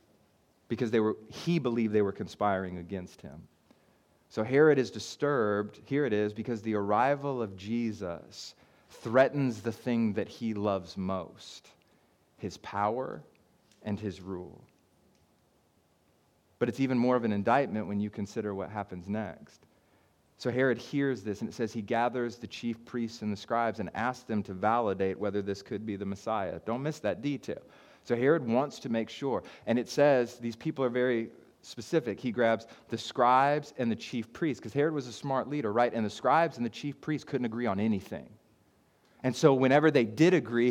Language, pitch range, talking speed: English, 105-130 Hz, 180 wpm